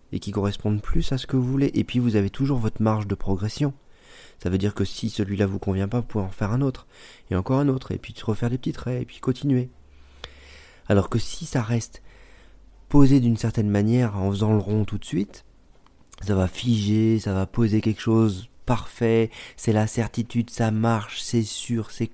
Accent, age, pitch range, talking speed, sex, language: French, 30-49, 95-115 Hz, 215 wpm, male, French